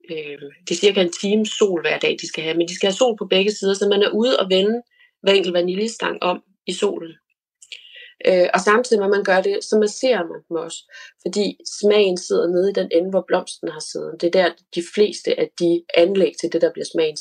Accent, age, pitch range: native, 30-49, 175-220 Hz